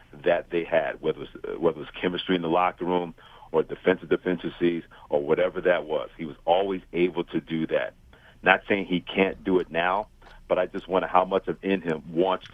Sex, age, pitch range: male, 50-69, 85-95 Hz